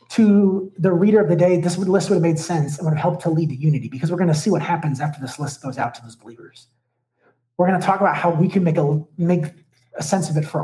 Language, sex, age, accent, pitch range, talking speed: English, male, 30-49, American, 130-205 Hz, 290 wpm